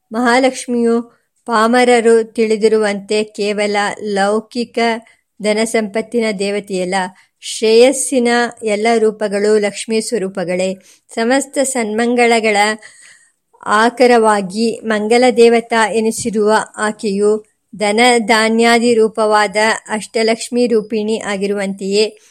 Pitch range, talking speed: 210-235 Hz, 65 wpm